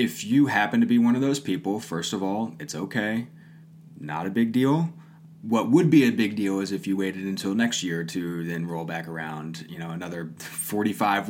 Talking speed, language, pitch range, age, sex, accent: 210 wpm, English, 80-115 Hz, 20-39, male, American